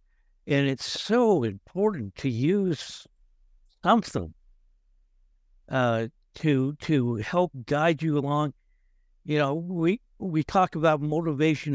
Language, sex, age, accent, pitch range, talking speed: English, male, 60-79, American, 120-200 Hz, 105 wpm